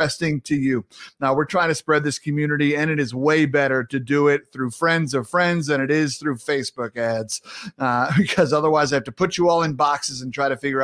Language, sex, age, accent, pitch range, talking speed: English, male, 30-49, American, 140-200 Hz, 235 wpm